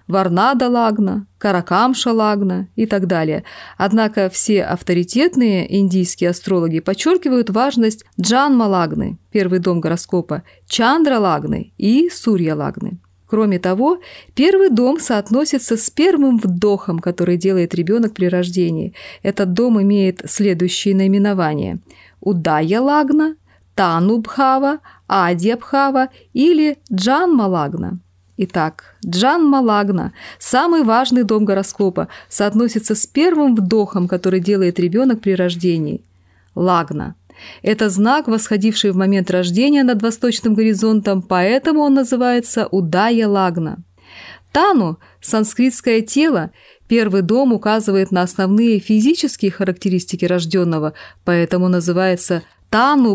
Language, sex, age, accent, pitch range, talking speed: Russian, female, 30-49, native, 180-235 Hz, 105 wpm